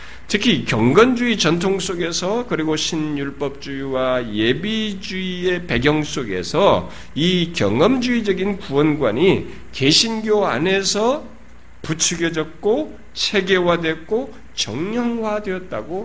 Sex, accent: male, native